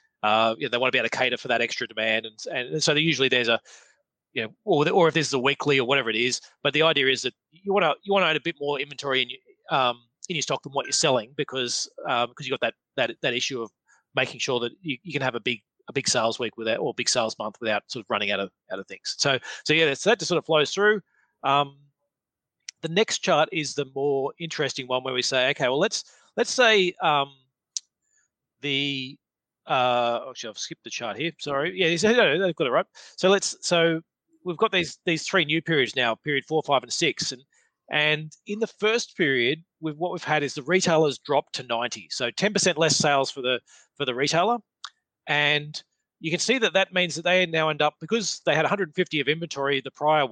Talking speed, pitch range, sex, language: 250 wpm, 135-175 Hz, male, English